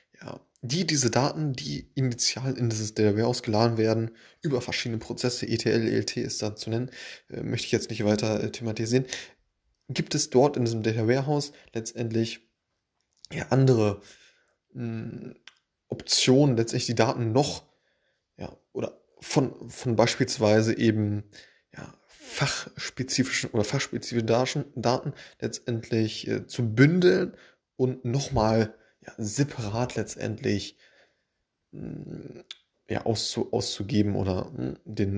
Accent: German